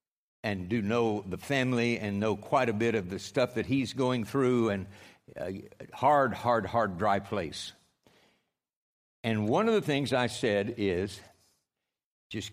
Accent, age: American, 60-79